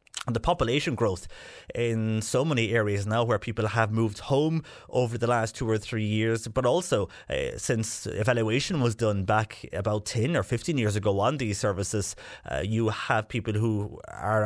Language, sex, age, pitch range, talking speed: English, male, 30-49, 110-130 Hz, 180 wpm